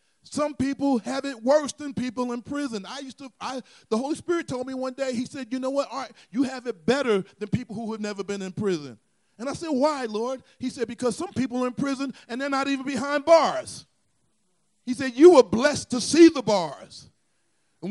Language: English